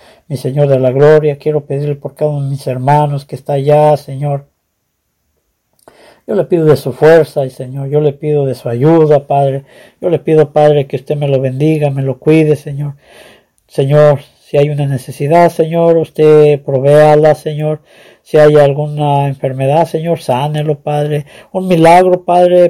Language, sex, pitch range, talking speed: English, male, 135-155 Hz, 165 wpm